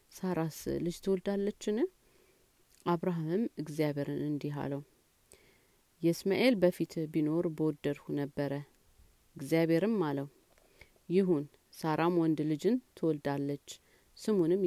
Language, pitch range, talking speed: Amharic, 145-175 Hz, 80 wpm